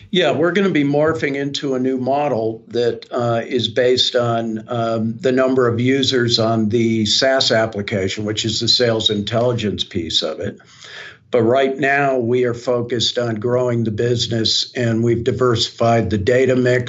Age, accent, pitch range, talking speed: 50-69, American, 110-130 Hz, 170 wpm